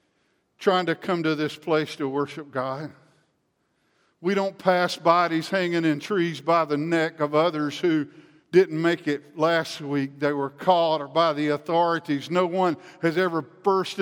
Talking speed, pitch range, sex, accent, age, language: 165 wpm, 140-175 Hz, male, American, 50-69, English